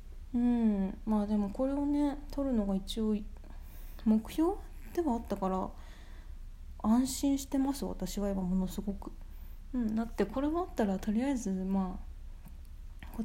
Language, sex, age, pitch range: Japanese, female, 20-39, 190-225 Hz